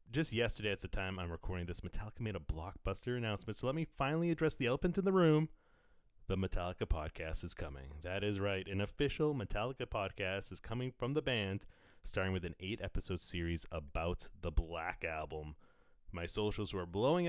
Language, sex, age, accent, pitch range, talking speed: English, male, 30-49, American, 90-120 Hz, 185 wpm